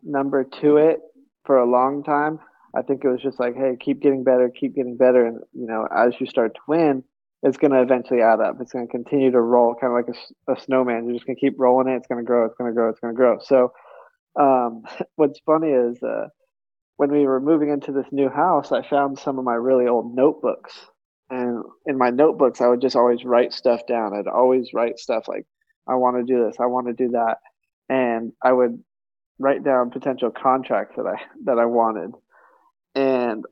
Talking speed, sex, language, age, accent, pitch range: 225 wpm, male, English, 20-39, American, 120-145 Hz